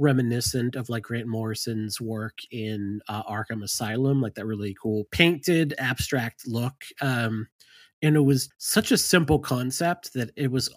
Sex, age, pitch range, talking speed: male, 30-49, 115-155 Hz, 155 wpm